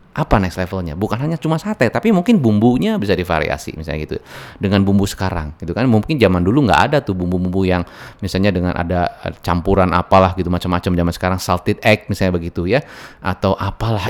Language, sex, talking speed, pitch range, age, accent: Indonesian, male, 185 wpm, 90-125 Hz, 30-49, native